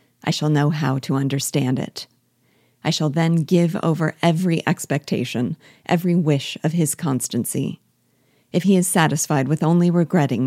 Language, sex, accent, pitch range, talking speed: English, female, American, 135-170 Hz, 150 wpm